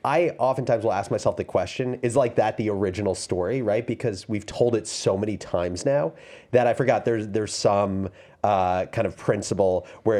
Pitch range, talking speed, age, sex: 95-120 Hz, 195 wpm, 30-49, male